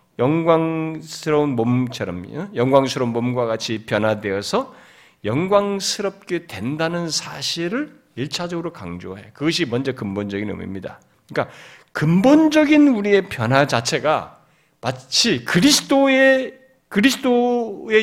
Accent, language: native, Korean